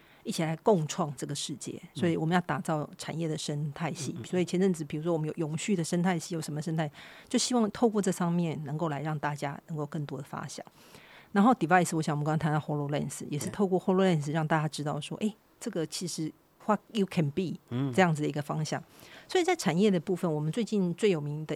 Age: 50-69